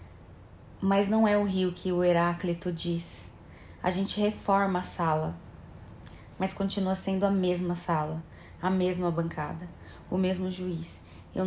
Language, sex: Portuguese, female